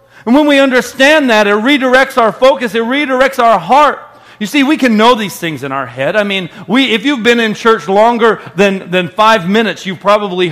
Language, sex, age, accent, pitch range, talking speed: English, male, 40-59, American, 195-235 Hz, 215 wpm